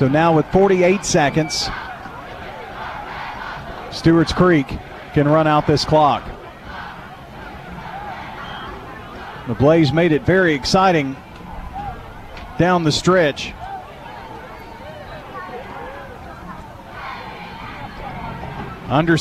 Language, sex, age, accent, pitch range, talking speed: English, male, 40-59, American, 135-165 Hz, 70 wpm